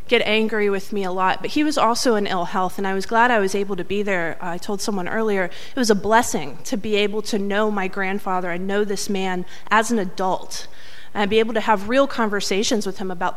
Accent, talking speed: American, 245 wpm